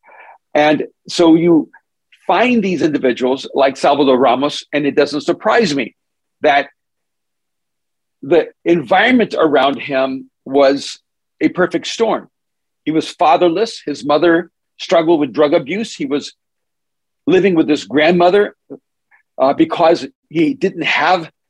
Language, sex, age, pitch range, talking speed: English, male, 50-69, 150-220 Hz, 120 wpm